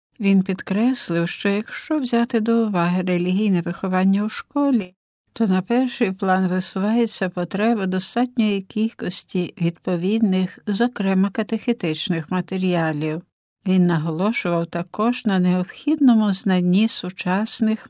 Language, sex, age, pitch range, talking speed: Ukrainian, female, 60-79, 175-220 Hz, 100 wpm